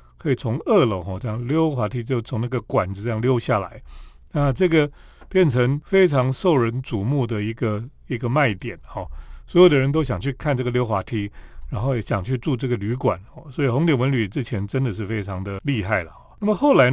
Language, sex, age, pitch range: Chinese, male, 40-59, 110-155 Hz